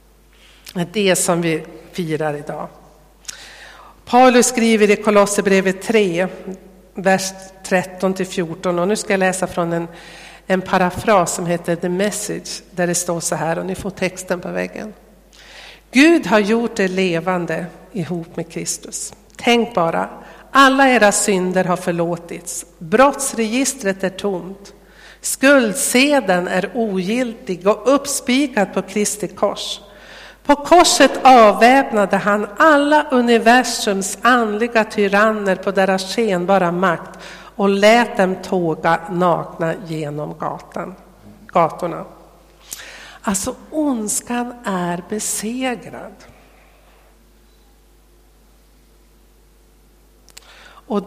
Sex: female